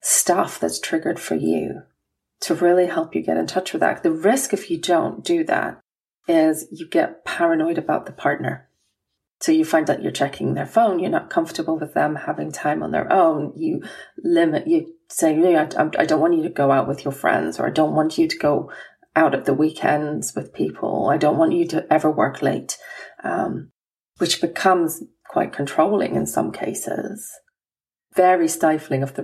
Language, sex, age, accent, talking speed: English, female, 30-49, British, 195 wpm